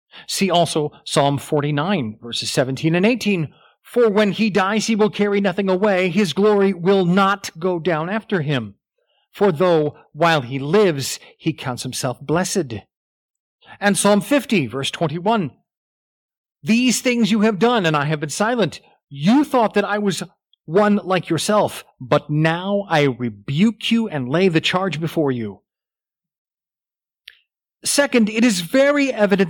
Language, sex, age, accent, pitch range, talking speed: English, male, 40-59, American, 155-210 Hz, 150 wpm